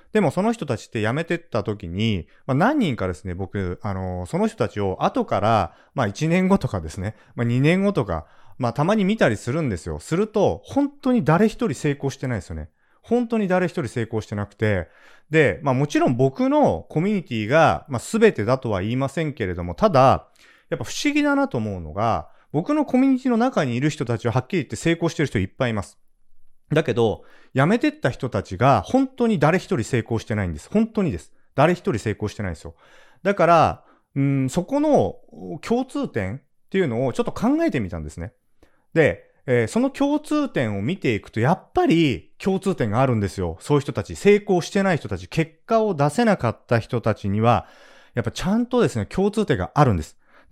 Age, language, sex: 30-49, Japanese, male